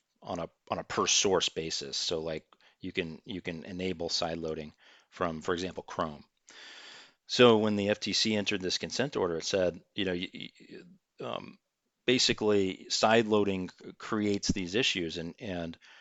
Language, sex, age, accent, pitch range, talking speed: English, male, 40-59, American, 90-105 Hz, 155 wpm